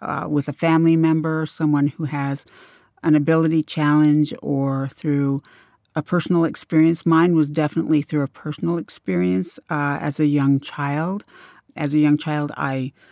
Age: 60-79